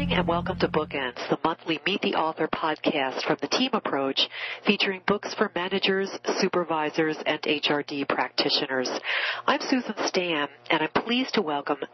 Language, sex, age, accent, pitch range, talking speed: English, female, 40-59, American, 150-195 Hz, 150 wpm